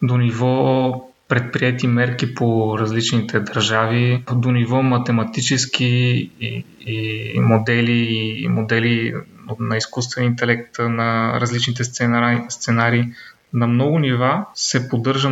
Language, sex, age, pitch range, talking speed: Bulgarian, male, 20-39, 115-130 Hz, 110 wpm